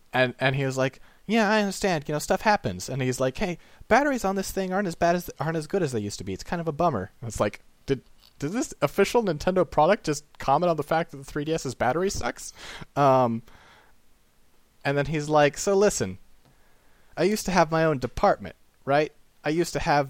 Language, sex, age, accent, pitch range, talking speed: English, male, 30-49, American, 130-180 Hz, 235 wpm